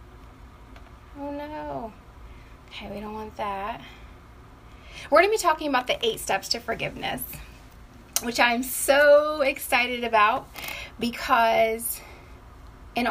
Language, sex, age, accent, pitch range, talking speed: English, female, 20-39, American, 205-255 Hz, 115 wpm